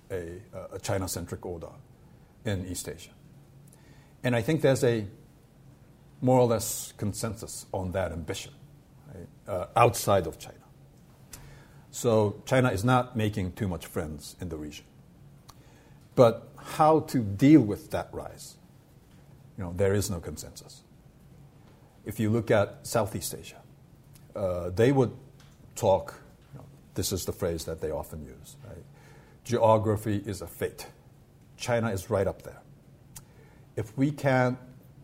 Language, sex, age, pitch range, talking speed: English, male, 50-69, 100-135 Hz, 140 wpm